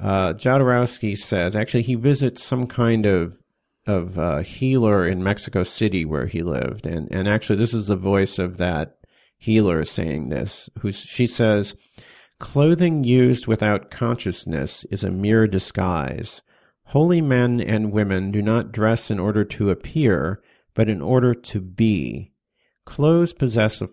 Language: English